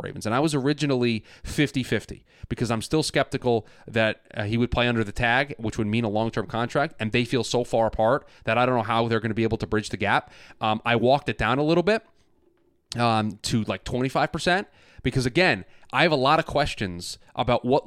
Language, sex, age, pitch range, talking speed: English, male, 30-49, 110-135 Hz, 220 wpm